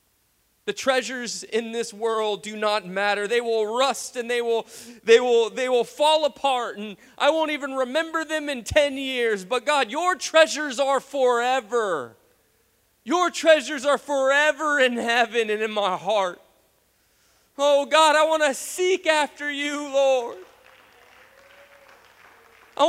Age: 30-49